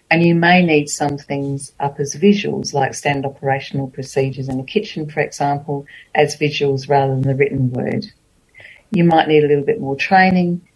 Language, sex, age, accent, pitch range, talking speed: English, female, 40-59, Australian, 135-170 Hz, 185 wpm